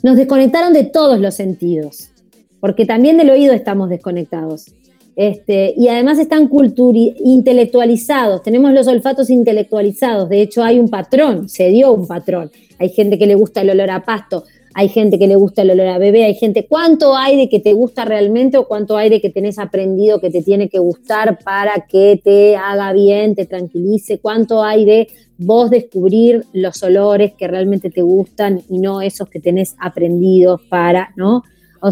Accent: Argentinian